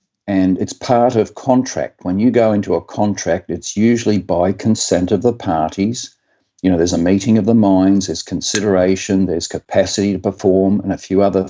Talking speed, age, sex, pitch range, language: 190 wpm, 50-69, male, 95-110 Hz, English